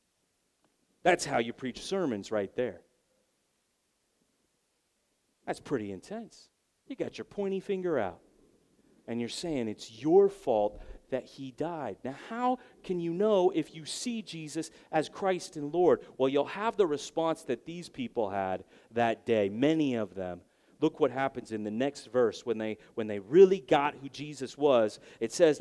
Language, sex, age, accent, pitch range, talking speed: English, male, 40-59, American, 120-175 Hz, 165 wpm